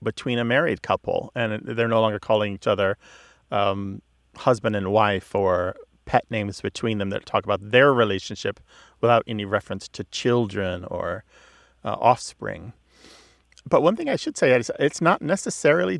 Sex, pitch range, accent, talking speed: male, 110-140 Hz, American, 160 wpm